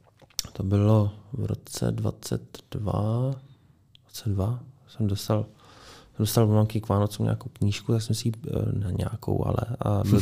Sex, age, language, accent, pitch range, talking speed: male, 20-39, Czech, native, 105-120 Hz, 130 wpm